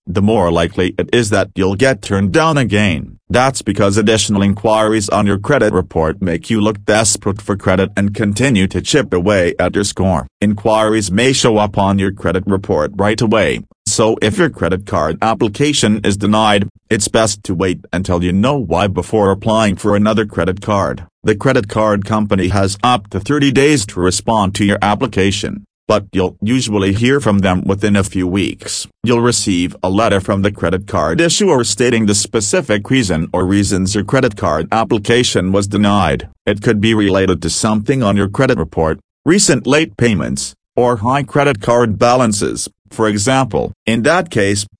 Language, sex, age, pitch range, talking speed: English, male, 40-59, 95-115 Hz, 180 wpm